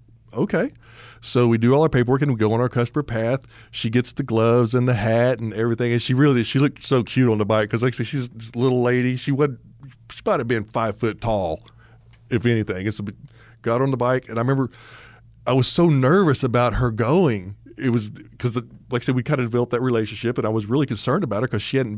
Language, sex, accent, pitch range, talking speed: English, male, American, 110-130 Hz, 245 wpm